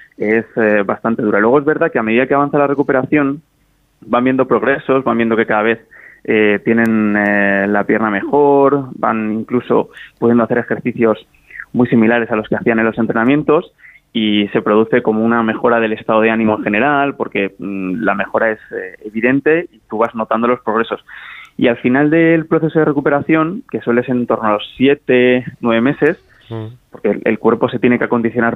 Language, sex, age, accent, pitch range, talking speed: Spanish, male, 20-39, Spanish, 110-135 Hz, 185 wpm